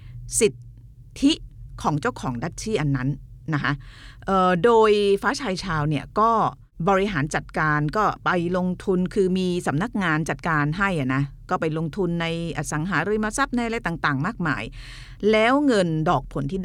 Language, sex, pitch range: Thai, female, 135-200 Hz